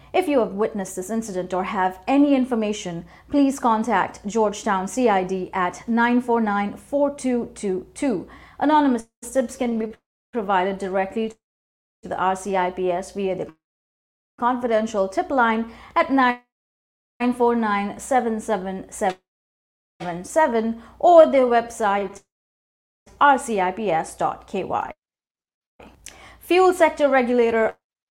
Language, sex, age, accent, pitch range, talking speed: English, female, 30-49, Indian, 200-260 Hz, 85 wpm